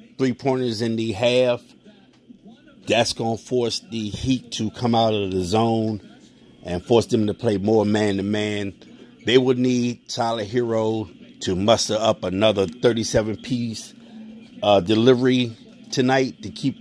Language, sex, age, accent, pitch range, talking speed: English, male, 50-69, American, 110-130 Hz, 135 wpm